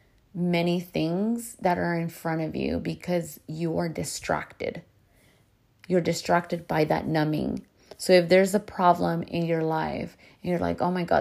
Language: English